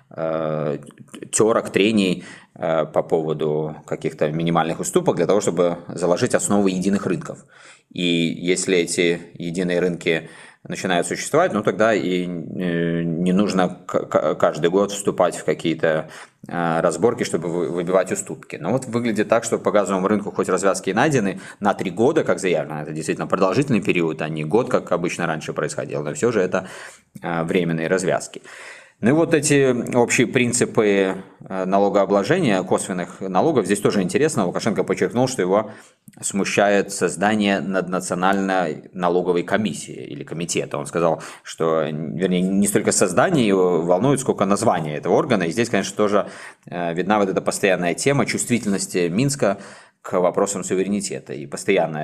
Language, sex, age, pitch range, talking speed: Russian, male, 20-39, 85-100 Hz, 140 wpm